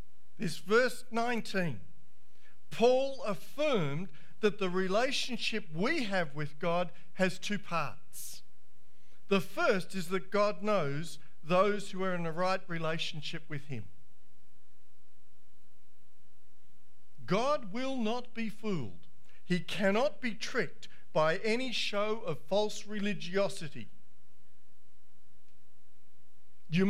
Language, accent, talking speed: English, Australian, 105 wpm